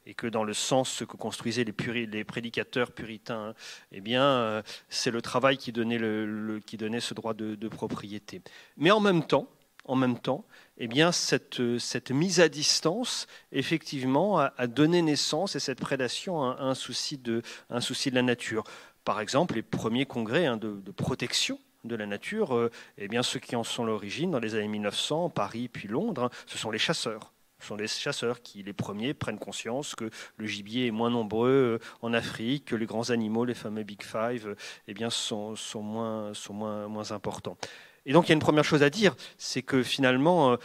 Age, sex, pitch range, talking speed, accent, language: 30-49, male, 115-145 Hz, 200 wpm, French, French